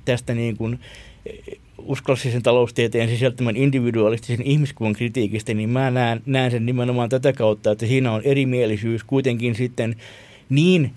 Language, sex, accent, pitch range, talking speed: Finnish, male, native, 105-130 Hz, 125 wpm